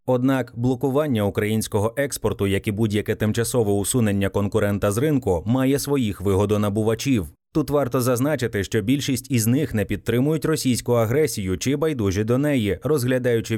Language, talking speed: Ukrainian, 135 wpm